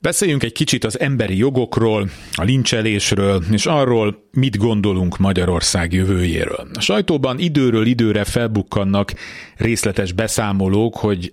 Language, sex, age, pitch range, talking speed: Hungarian, male, 30-49, 95-120 Hz, 115 wpm